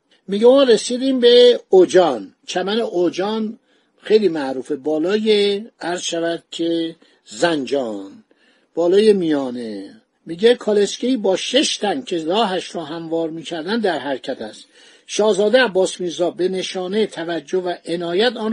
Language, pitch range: Persian, 170-230 Hz